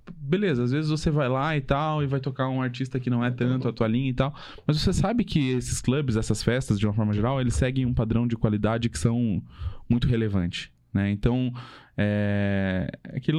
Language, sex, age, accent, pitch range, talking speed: Portuguese, male, 10-29, Brazilian, 110-145 Hz, 210 wpm